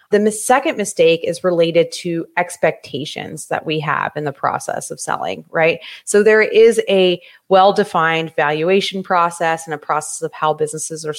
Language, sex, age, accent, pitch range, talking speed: English, female, 30-49, American, 155-195 Hz, 165 wpm